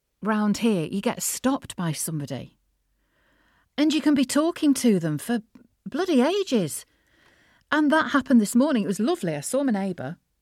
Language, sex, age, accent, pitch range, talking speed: English, female, 40-59, British, 170-245 Hz, 165 wpm